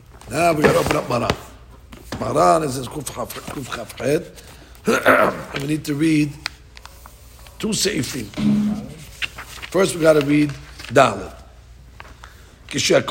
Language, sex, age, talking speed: English, male, 50-69, 70 wpm